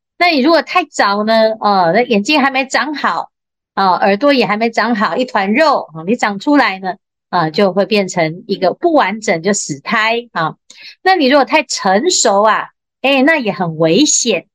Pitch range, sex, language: 190-265 Hz, female, Chinese